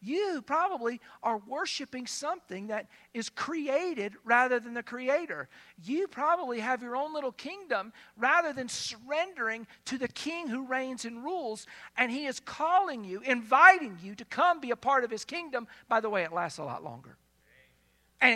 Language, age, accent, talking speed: English, 50-69, American, 175 wpm